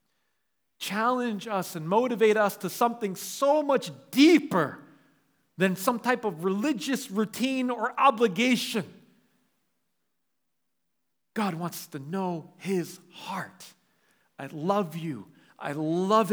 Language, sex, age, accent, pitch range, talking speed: English, male, 40-59, American, 140-220 Hz, 105 wpm